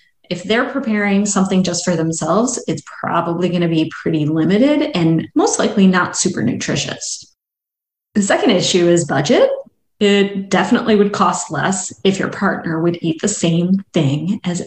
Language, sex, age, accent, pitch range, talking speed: English, female, 30-49, American, 175-230 Hz, 160 wpm